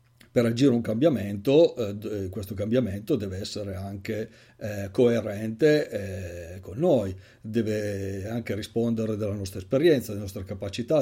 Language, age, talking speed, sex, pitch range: Italian, 40-59, 130 wpm, male, 105-125 Hz